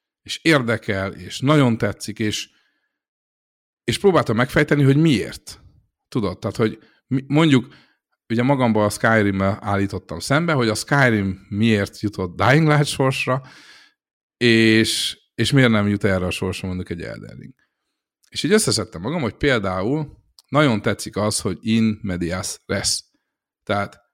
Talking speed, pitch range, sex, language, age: 135 wpm, 100-135 Hz, male, Hungarian, 50-69